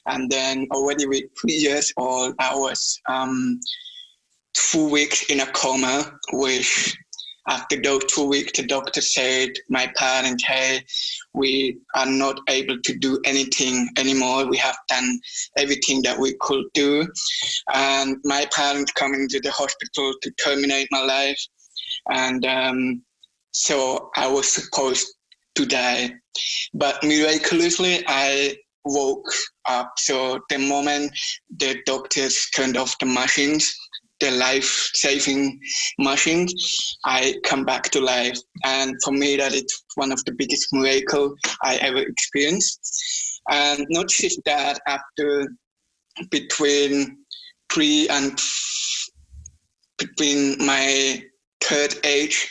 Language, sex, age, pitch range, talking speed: English, male, 20-39, 130-150 Hz, 125 wpm